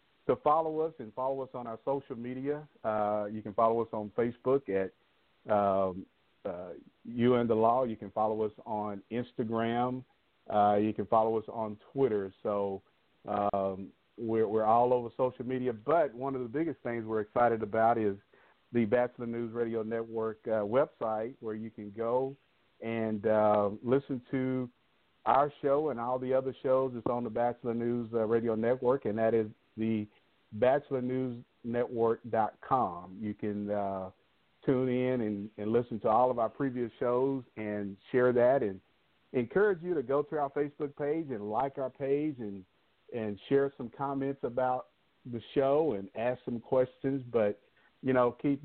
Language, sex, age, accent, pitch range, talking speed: English, male, 50-69, American, 110-130 Hz, 165 wpm